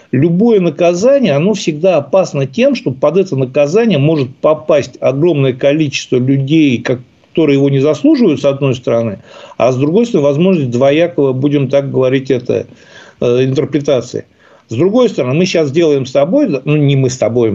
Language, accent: Russian, native